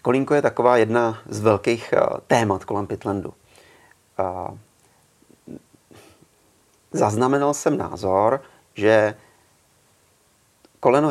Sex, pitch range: male, 105-125 Hz